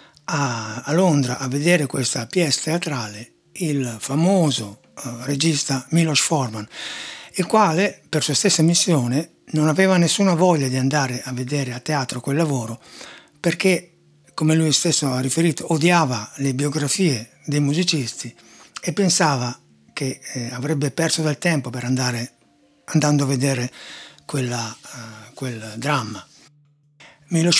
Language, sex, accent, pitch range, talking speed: Italian, male, native, 130-160 Hz, 120 wpm